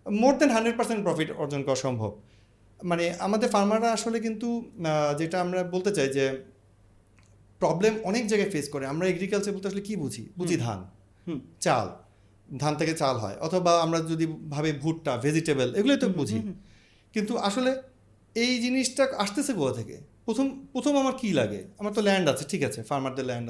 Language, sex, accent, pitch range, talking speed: Bengali, male, native, 140-200 Hz, 165 wpm